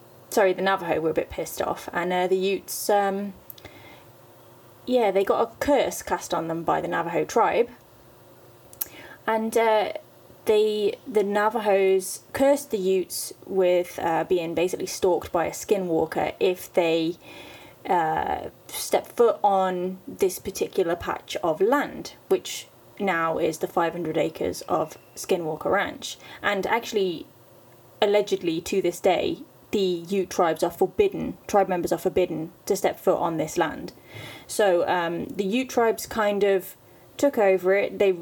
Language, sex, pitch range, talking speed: English, female, 180-220 Hz, 145 wpm